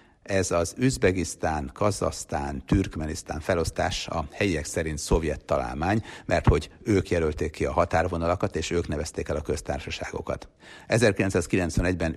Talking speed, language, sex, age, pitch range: 125 wpm, Hungarian, male, 60-79, 75-95 Hz